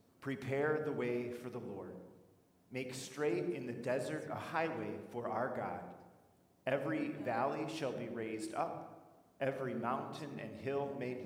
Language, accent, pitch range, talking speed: English, American, 100-130 Hz, 145 wpm